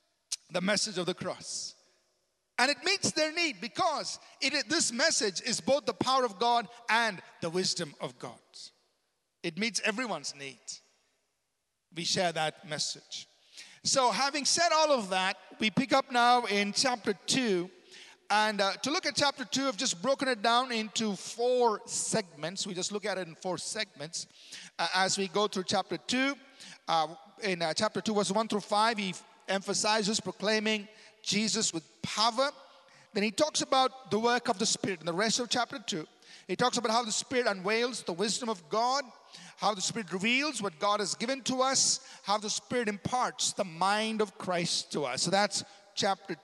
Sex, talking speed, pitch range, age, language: male, 180 wpm, 185-245 Hz, 50-69, English